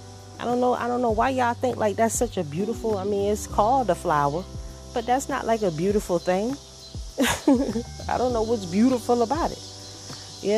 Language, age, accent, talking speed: English, 30-49, American, 200 wpm